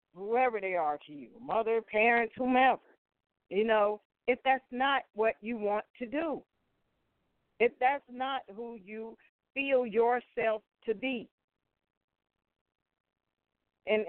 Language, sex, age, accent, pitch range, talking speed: English, female, 50-69, American, 205-255 Hz, 120 wpm